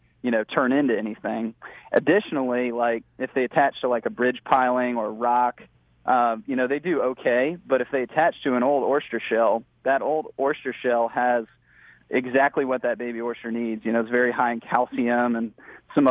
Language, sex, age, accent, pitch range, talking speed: English, male, 30-49, American, 120-130 Hz, 195 wpm